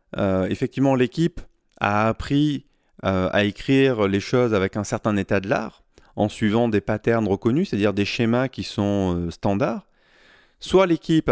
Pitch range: 105-135 Hz